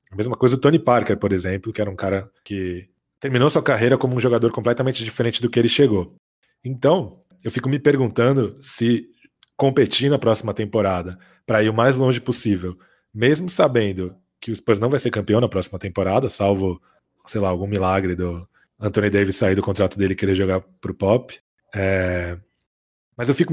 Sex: male